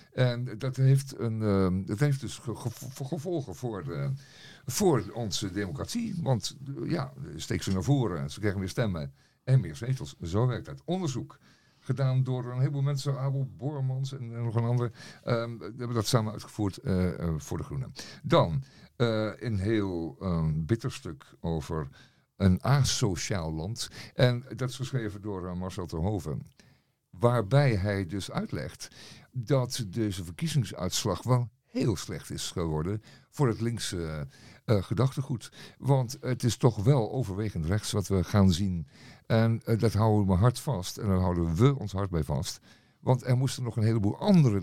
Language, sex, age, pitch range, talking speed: Dutch, male, 50-69, 100-130 Hz, 165 wpm